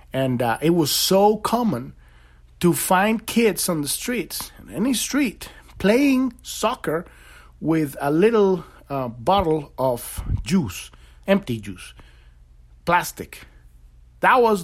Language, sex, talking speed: English, male, 120 wpm